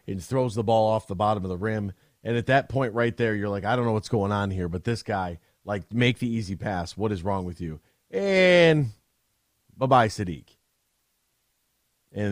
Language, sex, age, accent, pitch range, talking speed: English, male, 40-59, American, 100-125 Hz, 205 wpm